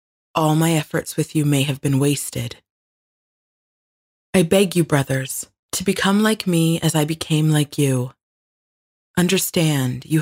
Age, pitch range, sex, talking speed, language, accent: 30-49, 140-180 Hz, female, 140 wpm, English, American